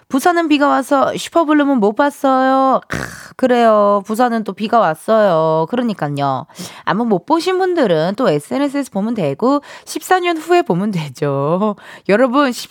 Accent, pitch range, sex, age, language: native, 180-270 Hz, female, 20-39, Korean